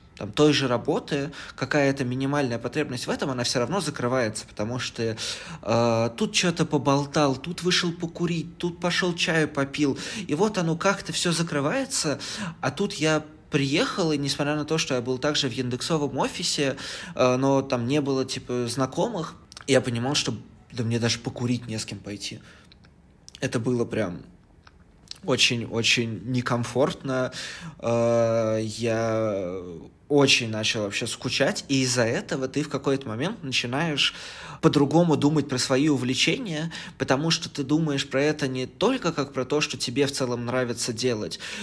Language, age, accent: Russian, 20-39, native